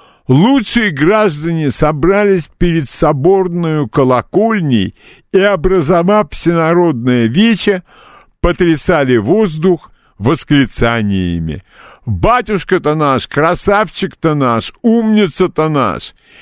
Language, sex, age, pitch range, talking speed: Russian, male, 60-79, 130-205 Hz, 70 wpm